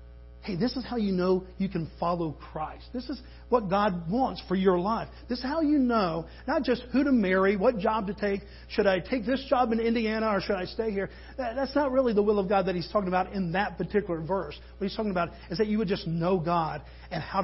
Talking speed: 250 wpm